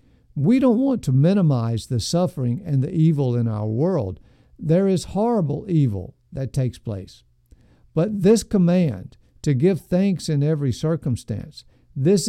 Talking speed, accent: 145 wpm, American